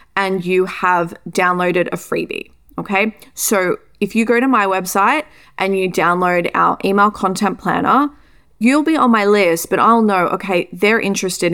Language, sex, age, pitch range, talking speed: English, female, 20-39, 175-225 Hz, 165 wpm